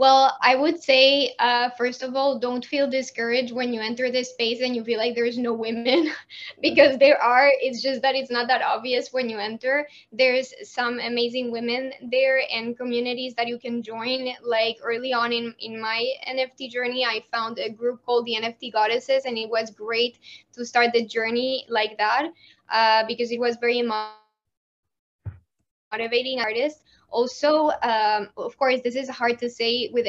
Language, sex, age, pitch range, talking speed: English, female, 10-29, 230-250 Hz, 180 wpm